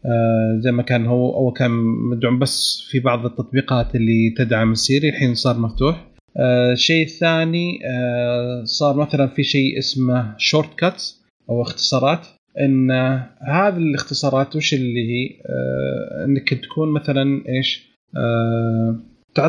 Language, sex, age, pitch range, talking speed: Arabic, male, 30-49, 125-150 Hz, 130 wpm